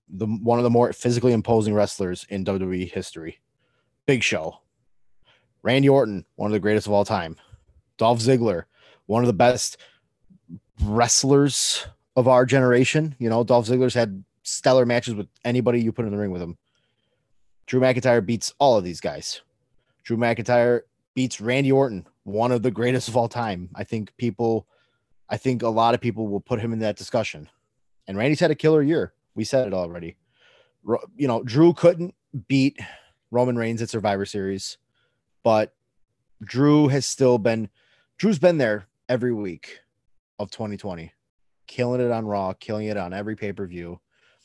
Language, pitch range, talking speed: English, 105-130 Hz, 165 wpm